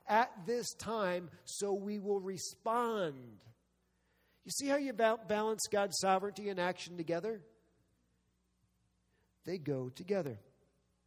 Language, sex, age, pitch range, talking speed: English, male, 40-59, 140-200 Hz, 110 wpm